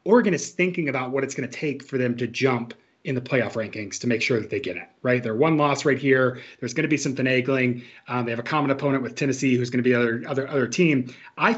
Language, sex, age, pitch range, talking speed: English, male, 30-49, 125-150 Hz, 275 wpm